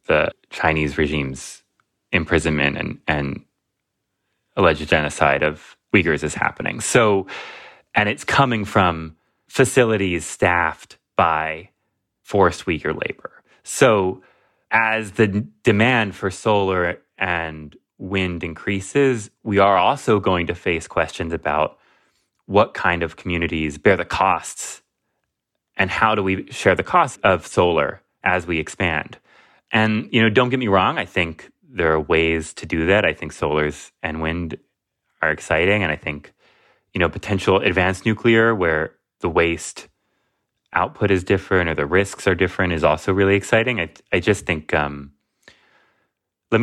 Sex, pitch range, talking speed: male, 80-105 Hz, 140 wpm